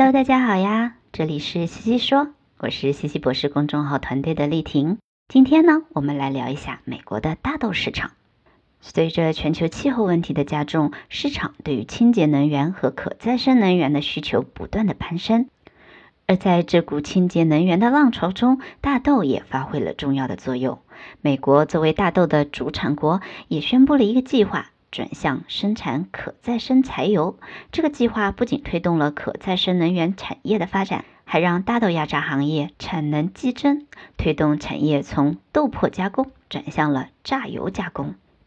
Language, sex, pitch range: Chinese, male, 150-235 Hz